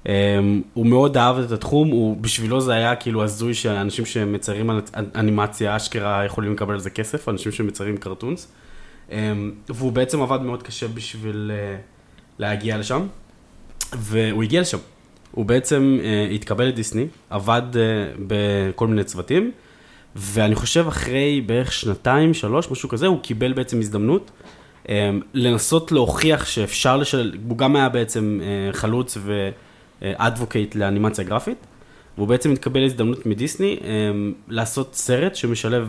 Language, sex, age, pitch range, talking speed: Hebrew, male, 20-39, 105-125 Hz, 140 wpm